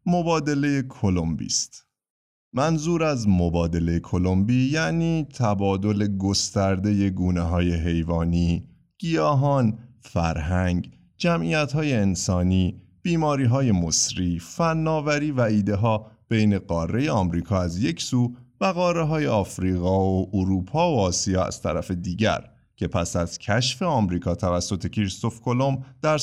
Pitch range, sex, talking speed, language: 90-135 Hz, male, 110 wpm, Persian